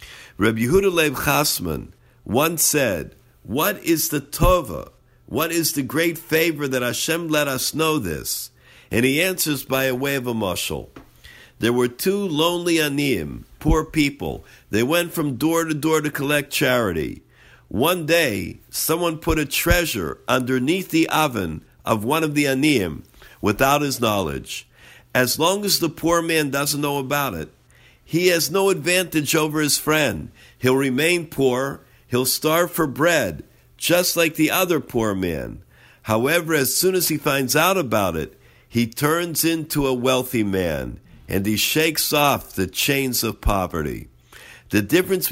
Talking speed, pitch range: 155 wpm, 115-155 Hz